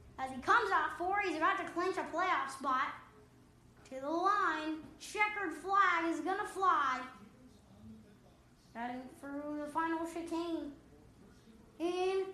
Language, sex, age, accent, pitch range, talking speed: English, female, 20-39, American, 285-370 Hz, 125 wpm